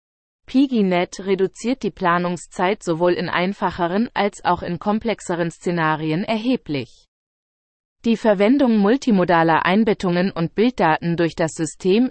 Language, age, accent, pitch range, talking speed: German, 30-49, German, 170-210 Hz, 110 wpm